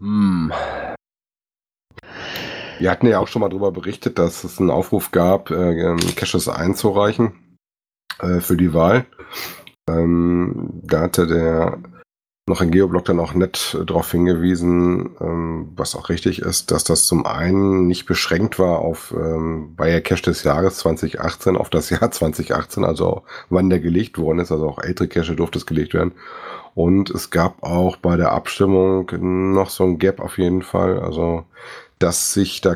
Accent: German